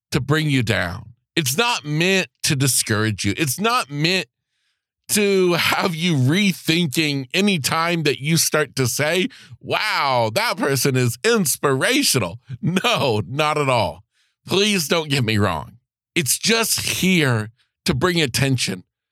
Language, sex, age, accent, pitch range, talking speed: English, male, 50-69, American, 120-165 Hz, 140 wpm